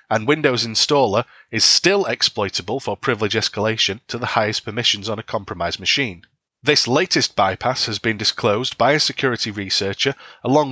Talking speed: 155 wpm